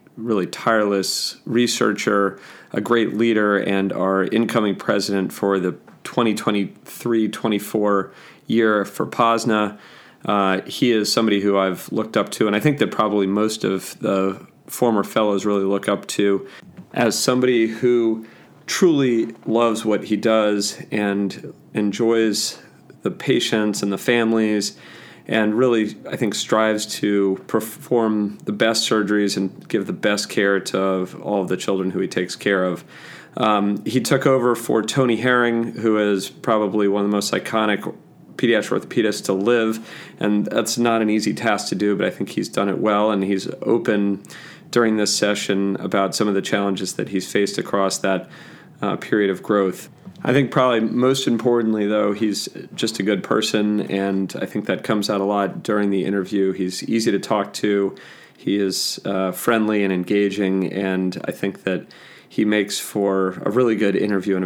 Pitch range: 100-110 Hz